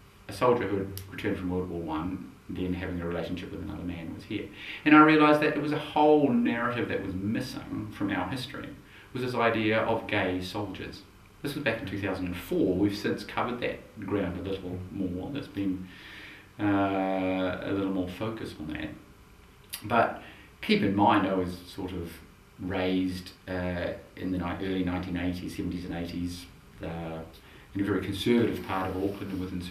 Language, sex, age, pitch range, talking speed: English, male, 30-49, 90-110 Hz, 180 wpm